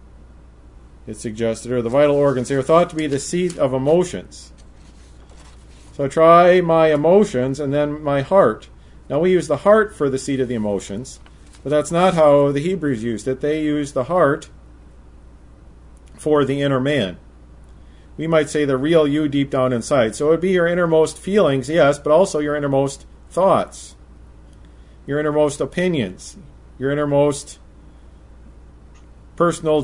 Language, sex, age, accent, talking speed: English, male, 40-59, American, 155 wpm